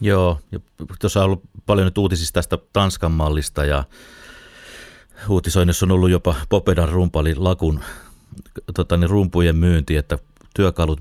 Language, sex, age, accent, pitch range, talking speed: Finnish, male, 30-49, native, 75-95 Hz, 130 wpm